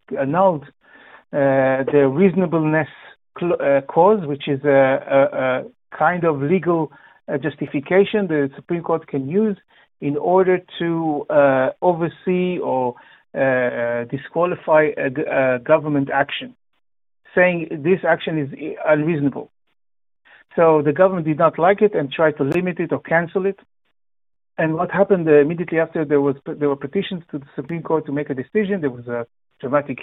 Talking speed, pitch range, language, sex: 145 wpm, 140-175 Hz, Hebrew, male